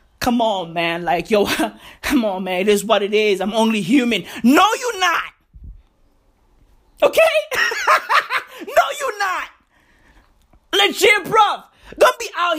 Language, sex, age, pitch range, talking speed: English, male, 20-39, 225-325 Hz, 135 wpm